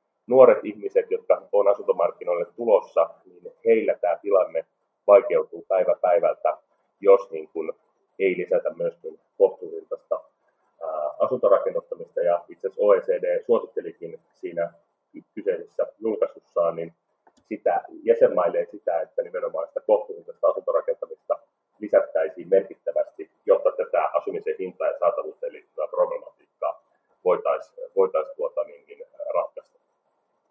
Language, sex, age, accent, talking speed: Finnish, male, 30-49, native, 100 wpm